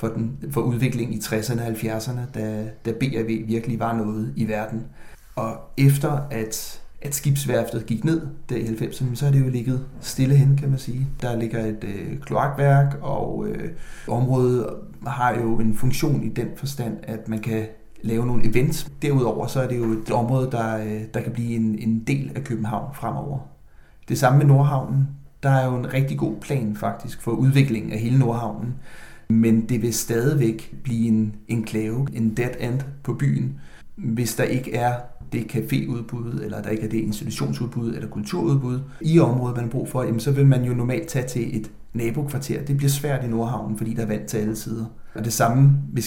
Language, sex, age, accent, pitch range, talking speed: Danish, male, 30-49, native, 110-135 Hz, 195 wpm